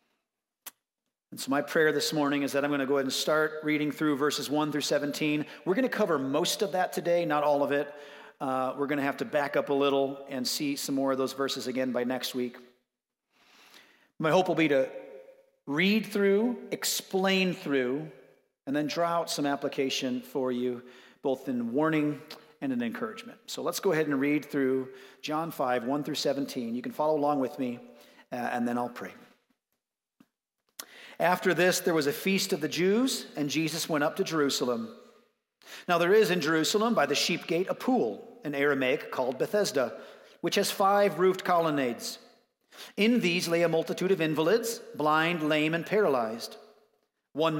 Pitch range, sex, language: 140-200 Hz, male, English